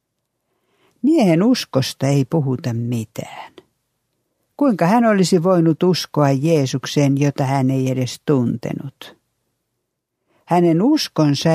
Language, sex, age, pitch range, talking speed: Finnish, female, 60-79, 130-175 Hz, 95 wpm